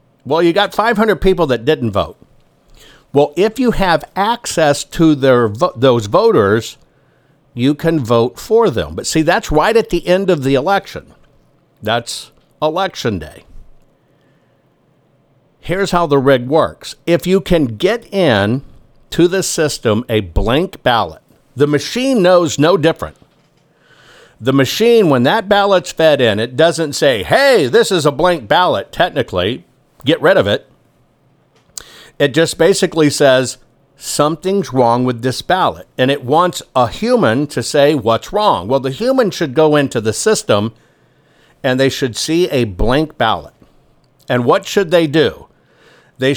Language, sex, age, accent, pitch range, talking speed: English, male, 60-79, American, 130-175 Hz, 150 wpm